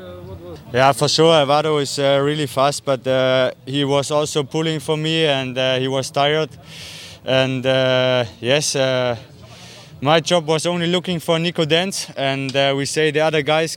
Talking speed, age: 175 wpm, 20-39